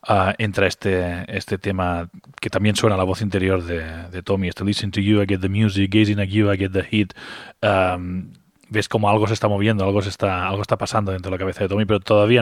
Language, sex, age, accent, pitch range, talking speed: Spanish, male, 20-39, Spanish, 95-105 Hz, 250 wpm